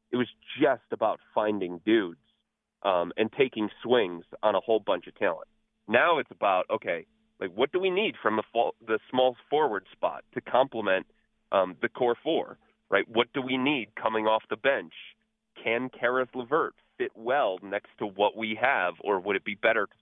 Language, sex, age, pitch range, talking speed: English, male, 30-49, 105-145 Hz, 190 wpm